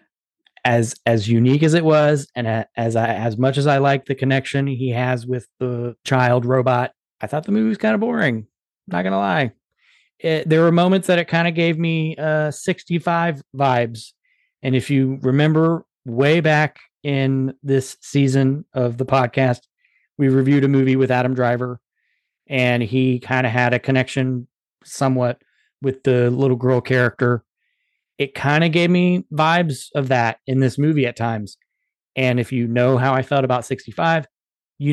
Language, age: English, 30-49